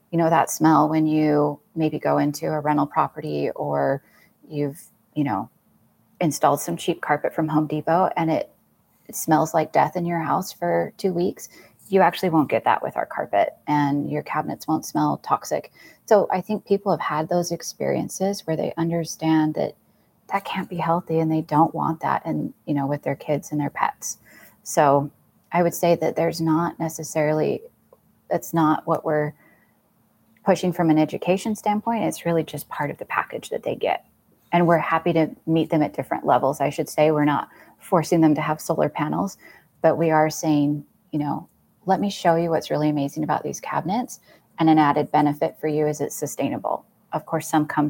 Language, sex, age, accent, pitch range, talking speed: English, female, 30-49, American, 150-170 Hz, 195 wpm